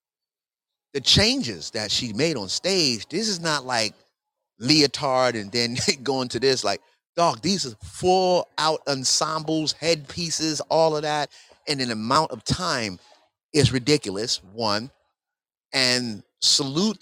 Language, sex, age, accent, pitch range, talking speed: English, male, 30-49, American, 110-145 Hz, 135 wpm